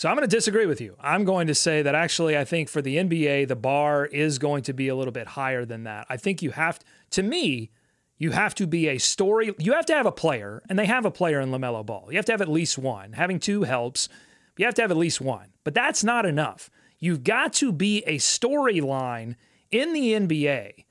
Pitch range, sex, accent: 140-195 Hz, male, American